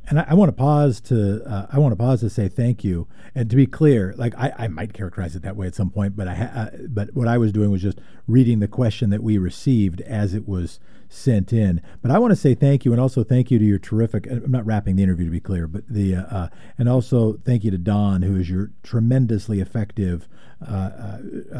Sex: male